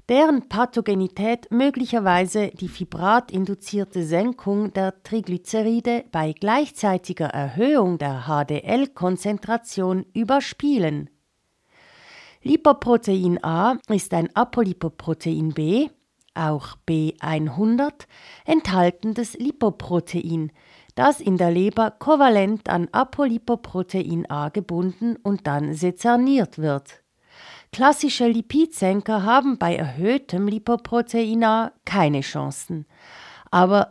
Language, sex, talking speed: German, female, 85 wpm